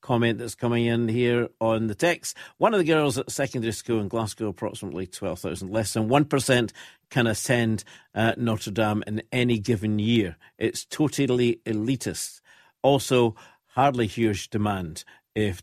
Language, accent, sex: English, British, male